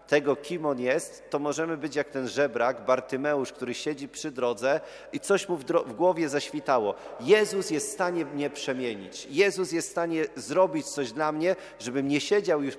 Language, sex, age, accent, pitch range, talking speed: Polish, male, 40-59, native, 115-145 Hz, 190 wpm